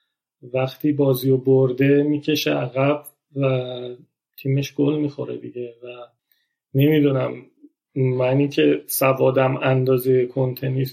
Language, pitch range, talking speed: Persian, 130-150 Hz, 100 wpm